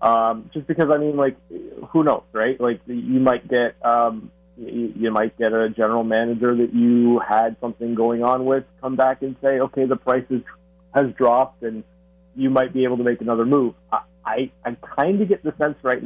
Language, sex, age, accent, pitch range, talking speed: English, male, 30-49, American, 110-130 Hz, 200 wpm